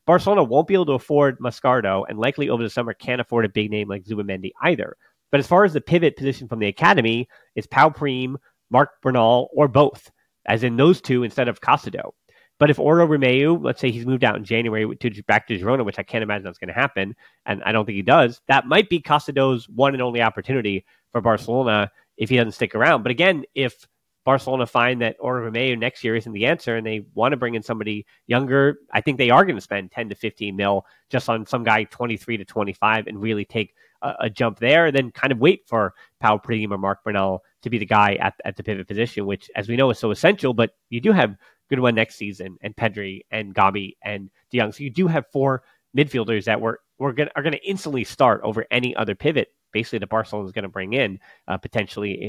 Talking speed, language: 235 wpm, English